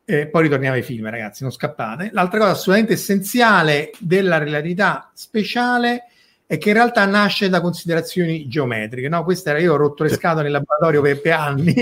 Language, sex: Italian, male